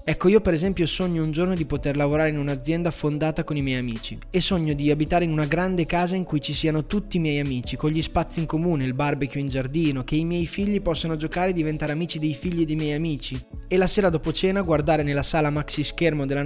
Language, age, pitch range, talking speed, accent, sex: Italian, 20-39, 145-170 Hz, 245 wpm, native, male